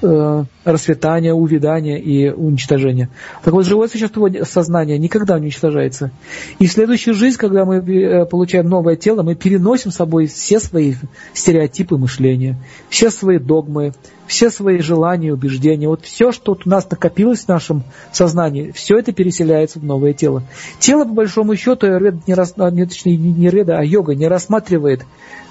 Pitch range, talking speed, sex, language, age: 155-195 Hz, 145 wpm, male, Russian, 40-59